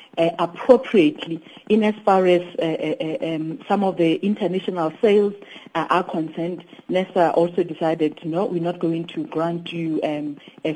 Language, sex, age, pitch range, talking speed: English, female, 40-59, 160-190 Hz, 160 wpm